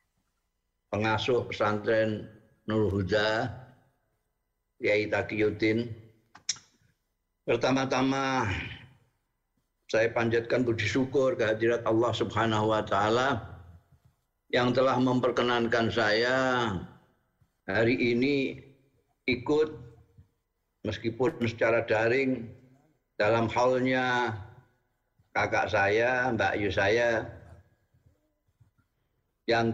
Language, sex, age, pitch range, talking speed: Indonesian, male, 50-69, 105-125 Hz, 65 wpm